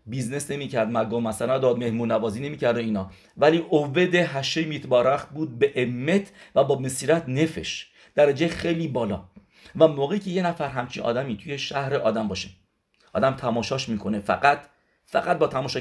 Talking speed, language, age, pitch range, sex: 165 wpm, English, 50-69, 120-160 Hz, male